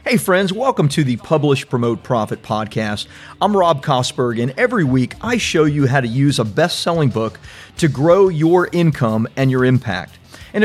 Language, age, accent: English, 40-59, American